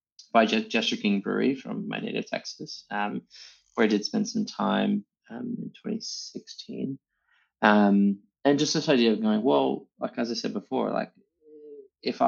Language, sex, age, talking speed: English, male, 20-39, 165 wpm